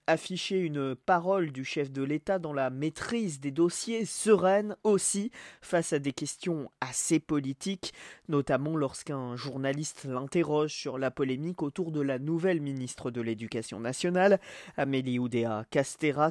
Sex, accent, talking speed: male, French, 140 wpm